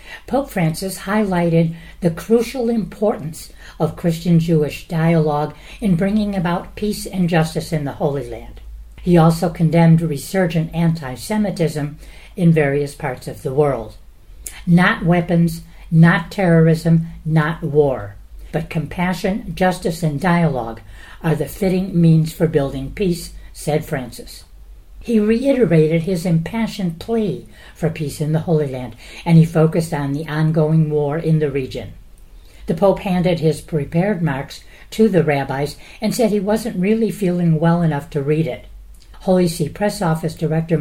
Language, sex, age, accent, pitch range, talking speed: English, female, 60-79, American, 150-180 Hz, 140 wpm